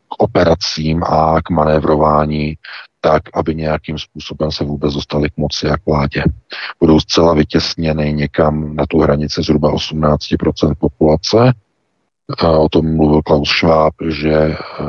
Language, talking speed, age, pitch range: Czech, 130 wpm, 40-59, 75-85 Hz